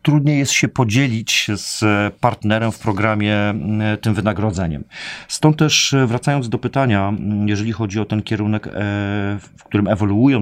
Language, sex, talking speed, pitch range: Polish, male, 130 wpm, 100-115 Hz